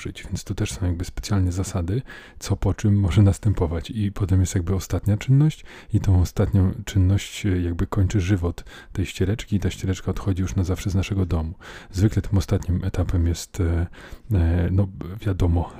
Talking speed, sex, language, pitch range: 165 wpm, male, Polish, 90-105 Hz